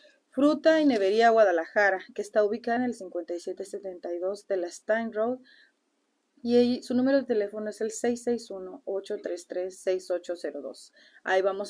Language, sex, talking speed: Spanish, female, 130 wpm